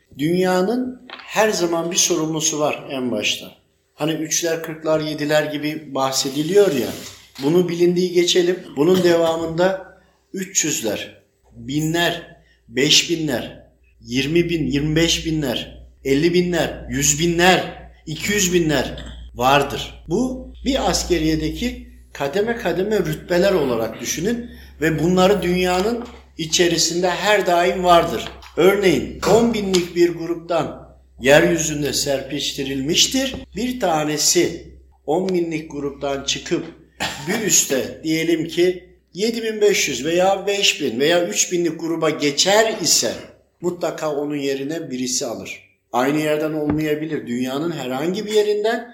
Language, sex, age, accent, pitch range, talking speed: Turkish, male, 50-69, native, 145-185 Hz, 110 wpm